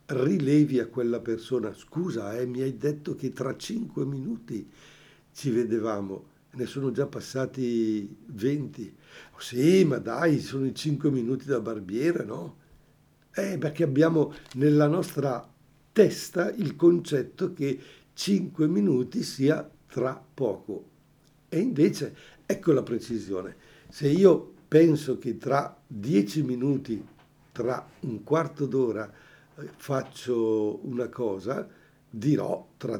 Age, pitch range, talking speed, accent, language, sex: 60-79, 120-150 Hz, 120 wpm, native, Italian, male